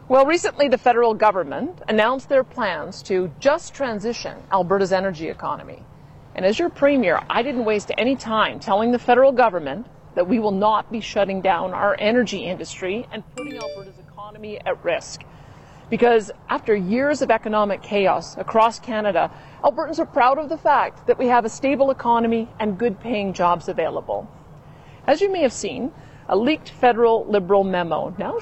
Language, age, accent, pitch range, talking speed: English, 40-59, American, 205-275 Hz, 165 wpm